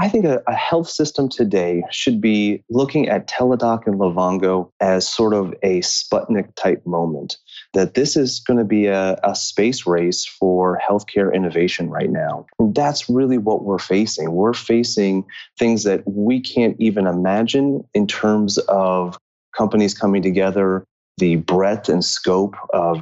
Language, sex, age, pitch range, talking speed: English, male, 30-49, 95-120 Hz, 150 wpm